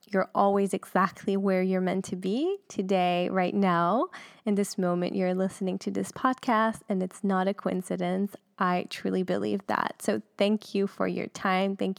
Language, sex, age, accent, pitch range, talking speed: English, female, 10-29, American, 185-210 Hz, 175 wpm